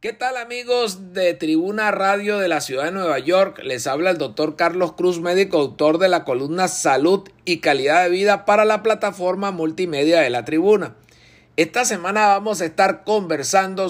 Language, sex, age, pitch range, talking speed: Spanish, male, 50-69, 155-195 Hz, 175 wpm